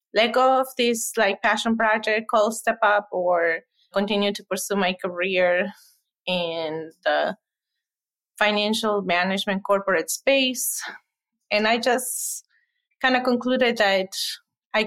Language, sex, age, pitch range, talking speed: English, female, 20-39, 175-220 Hz, 120 wpm